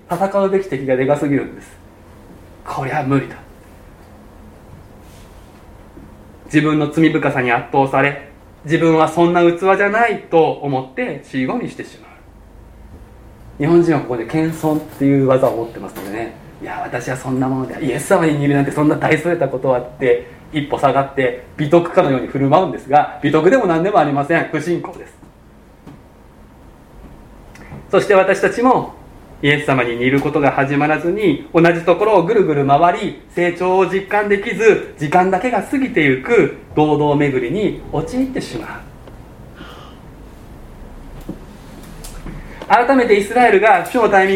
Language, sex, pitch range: Japanese, male, 130-195 Hz